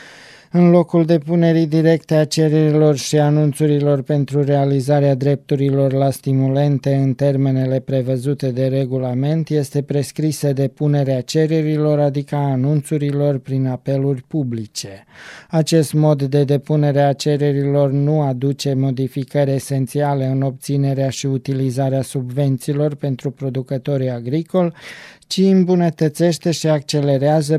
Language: Romanian